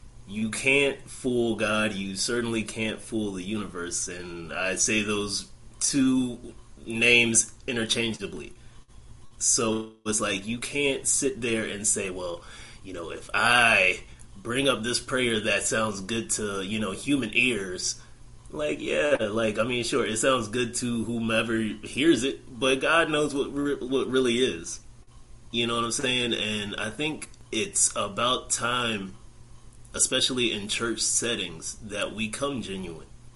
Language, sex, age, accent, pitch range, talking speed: English, male, 30-49, American, 110-130 Hz, 150 wpm